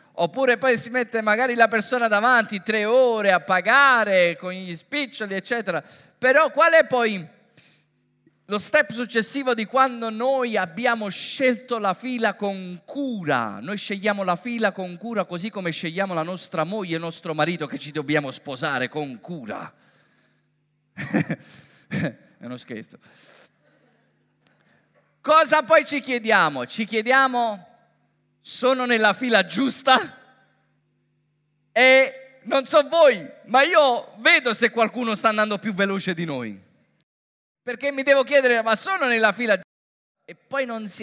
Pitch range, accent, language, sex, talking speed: 160-245 Hz, native, Italian, male, 140 wpm